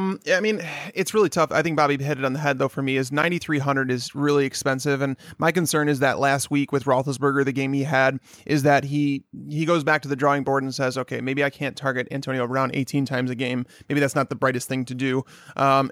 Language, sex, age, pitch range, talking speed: English, male, 30-49, 135-155 Hz, 250 wpm